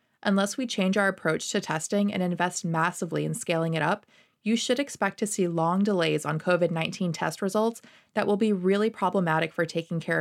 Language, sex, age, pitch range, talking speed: English, female, 20-39, 165-215 Hz, 195 wpm